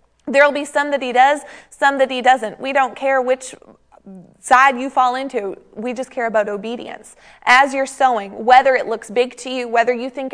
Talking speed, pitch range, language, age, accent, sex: 205 wpm, 220-255 Hz, English, 30-49, American, female